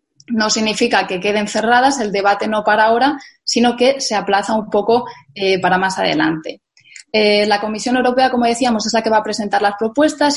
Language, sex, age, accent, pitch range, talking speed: Spanish, female, 20-39, Spanish, 200-245 Hz, 195 wpm